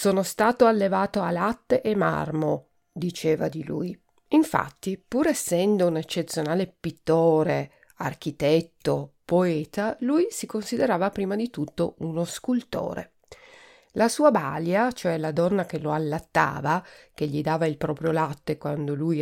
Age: 50-69